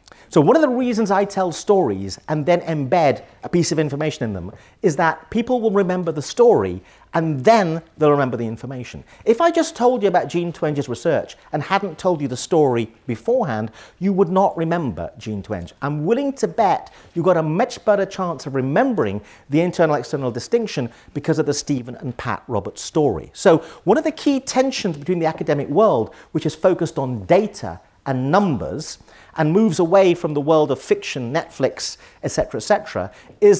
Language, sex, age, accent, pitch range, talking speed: English, male, 50-69, British, 135-200 Hz, 190 wpm